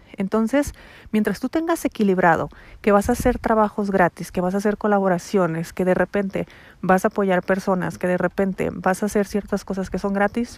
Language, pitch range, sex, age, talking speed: Spanish, 180-210 Hz, female, 40-59, 195 wpm